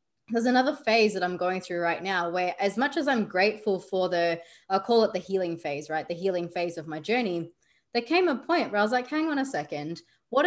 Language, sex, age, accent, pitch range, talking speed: English, female, 20-39, Australian, 175-230 Hz, 245 wpm